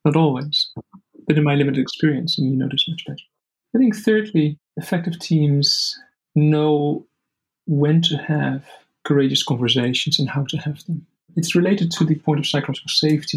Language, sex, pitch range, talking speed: English, male, 135-160 Hz, 160 wpm